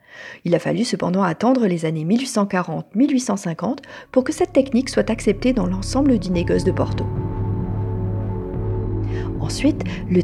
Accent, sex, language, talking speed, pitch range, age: French, female, French, 130 wpm, 160-255 Hz, 40-59